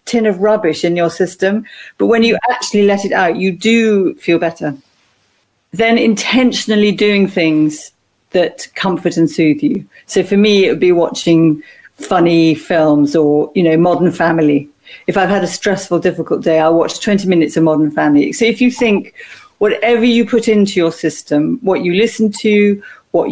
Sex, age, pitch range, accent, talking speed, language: female, 40-59, 165-210 Hz, British, 180 wpm, English